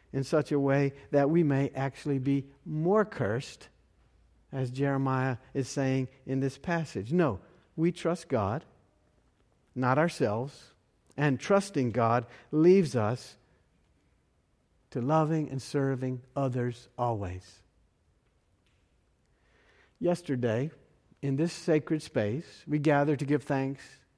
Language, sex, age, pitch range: English, male, 50-69, 125-155 Hz